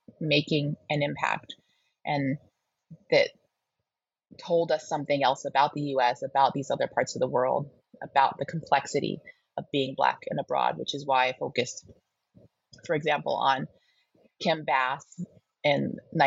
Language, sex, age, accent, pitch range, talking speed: English, female, 30-49, American, 140-175 Hz, 140 wpm